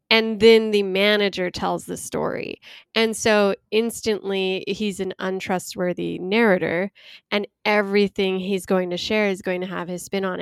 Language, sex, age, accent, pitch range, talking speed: English, female, 10-29, American, 185-215 Hz, 155 wpm